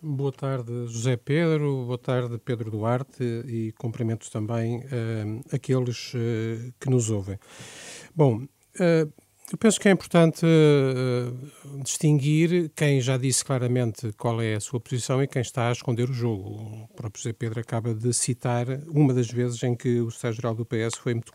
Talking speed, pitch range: 160 wpm, 120-145 Hz